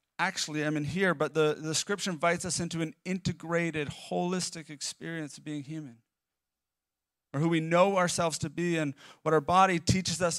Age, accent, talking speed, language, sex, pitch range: 40-59, American, 180 wpm, English, male, 155-210 Hz